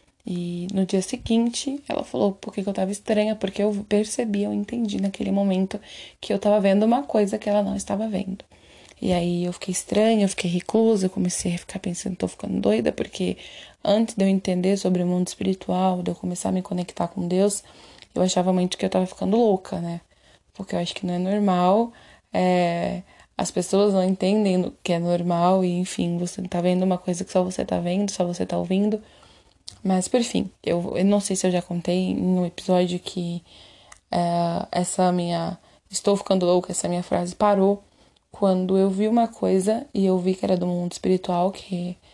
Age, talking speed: 20-39, 200 wpm